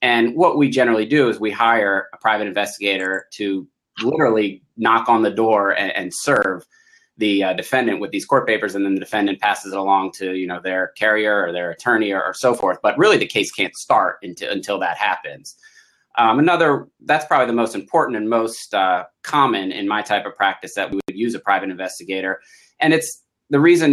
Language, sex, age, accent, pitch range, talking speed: English, male, 30-49, American, 105-145 Hz, 210 wpm